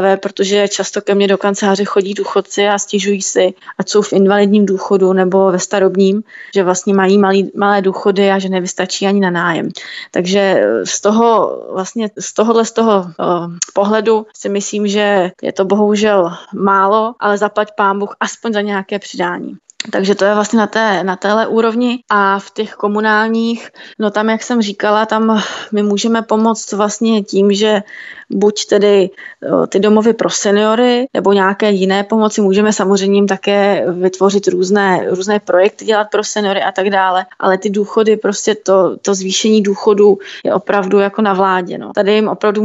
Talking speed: 165 wpm